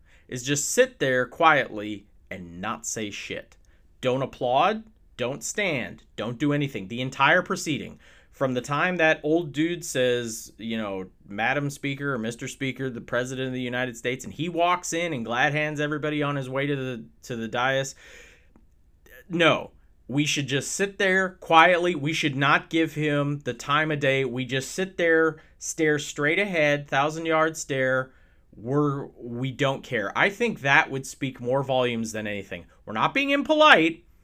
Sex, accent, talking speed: male, American, 170 wpm